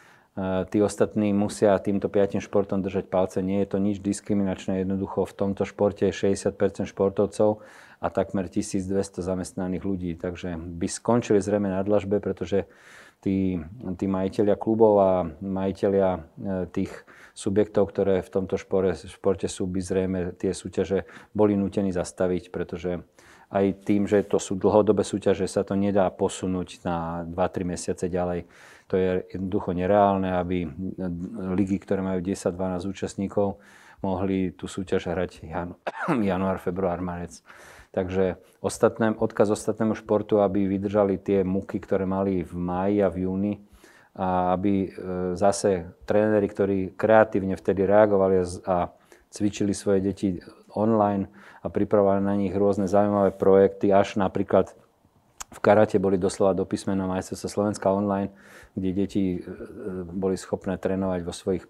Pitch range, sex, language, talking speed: 95-100 Hz, male, Slovak, 135 wpm